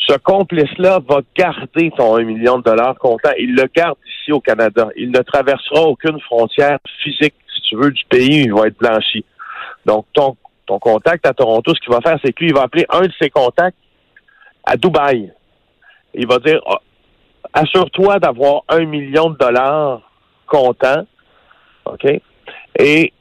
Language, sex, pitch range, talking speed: French, male, 125-160 Hz, 165 wpm